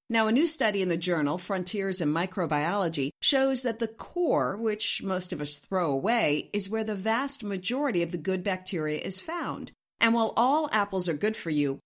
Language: English